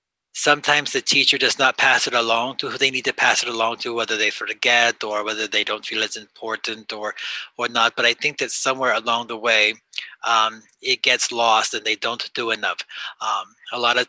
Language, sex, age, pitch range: English, male, 30-49, 115-145 Hz